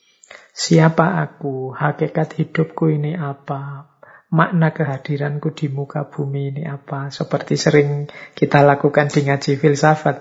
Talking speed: 120 wpm